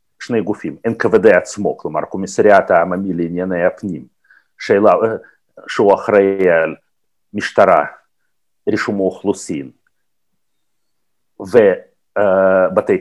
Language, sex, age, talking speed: Hebrew, male, 50-69, 80 wpm